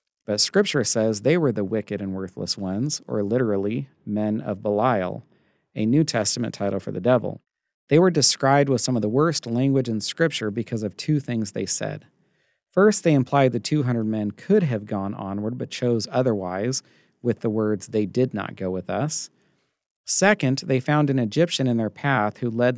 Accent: American